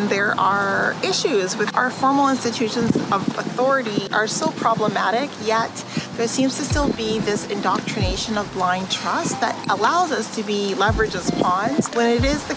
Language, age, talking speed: English, 30-49, 165 wpm